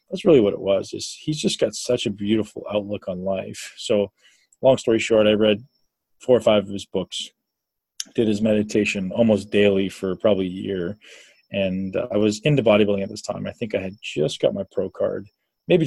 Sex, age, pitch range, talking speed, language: male, 20-39, 100-115 Hz, 205 wpm, English